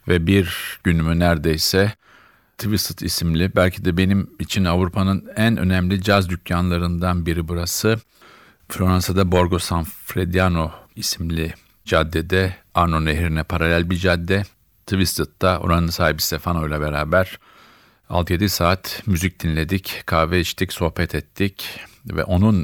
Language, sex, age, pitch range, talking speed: Turkish, male, 50-69, 85-100 Hz, 115 wpm